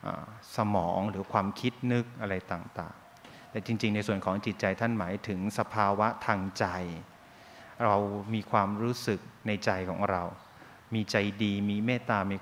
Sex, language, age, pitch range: male, Thai, 30-49, 95-115 Hz